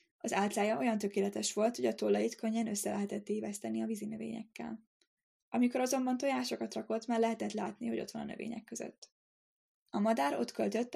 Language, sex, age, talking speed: Hungarian, female, 10-29, 175 wpm